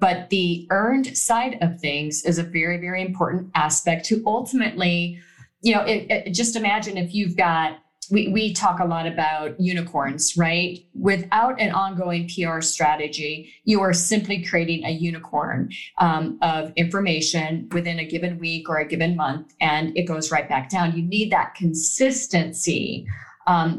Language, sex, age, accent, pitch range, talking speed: English, female, 30-49, American, 160-190 Hz, 155 wpm